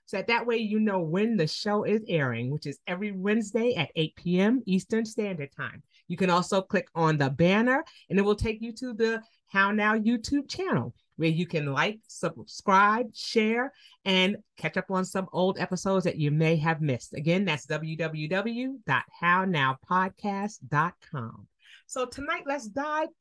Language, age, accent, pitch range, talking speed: English, 40-59, American, 175-235 Hz, 165 wpm